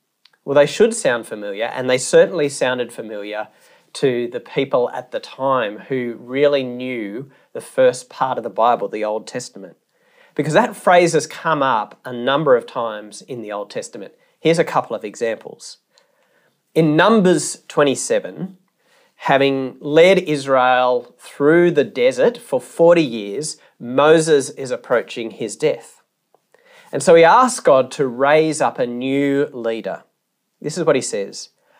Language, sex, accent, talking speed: English, male, Australian, 150 wpm